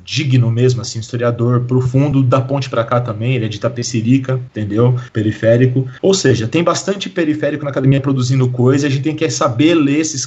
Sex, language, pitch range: male, Portuguese, 125-155 Hz